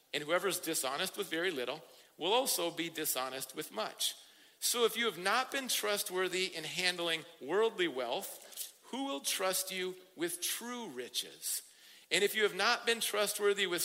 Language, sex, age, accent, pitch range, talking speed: English, male, 50-69, American, 170-260 Hz, 165 wpm